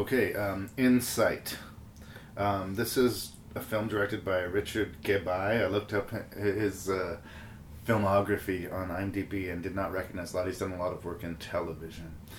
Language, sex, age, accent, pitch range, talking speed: English, male, 30-49, American, 85-105 Hz, 165 wpm